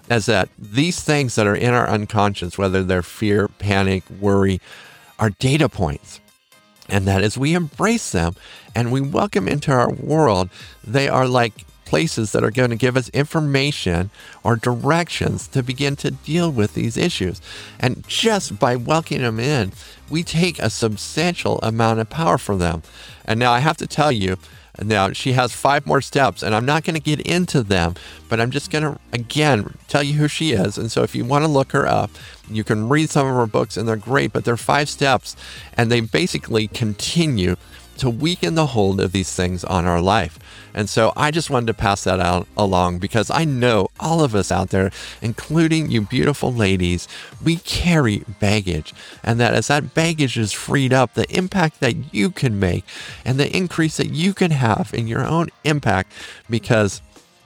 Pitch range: 100-145 Hz